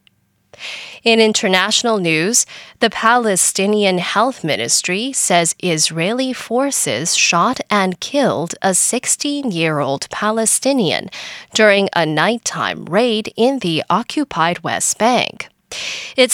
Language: English